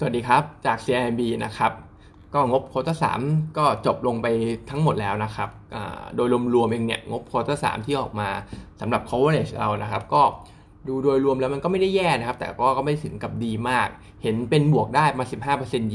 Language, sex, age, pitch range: Thai, male, 20-39, 110-145 Hz